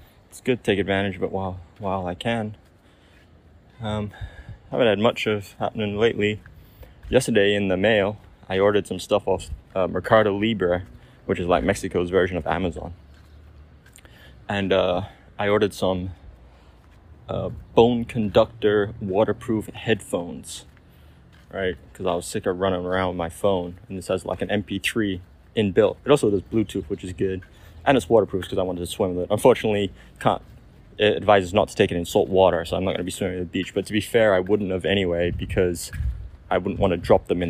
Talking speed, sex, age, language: 190 wpm, male, 20-39, English